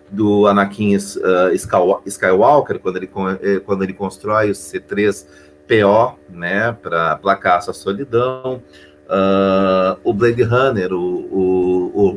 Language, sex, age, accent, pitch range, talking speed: Portuguese, male, 40-59, Brazilian, 95-125 Hz, 115 wpm